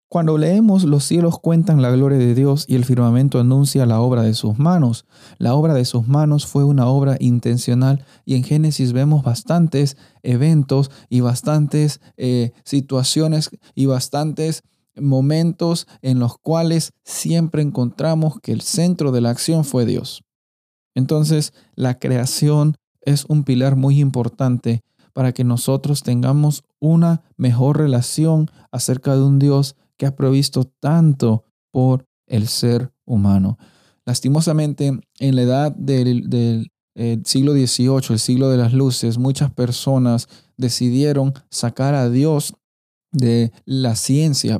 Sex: male